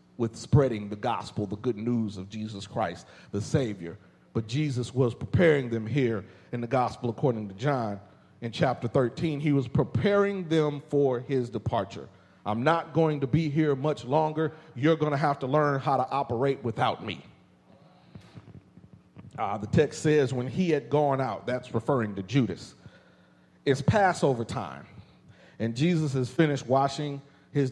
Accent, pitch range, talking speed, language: American, 115-145 Hz, 160 wpm, English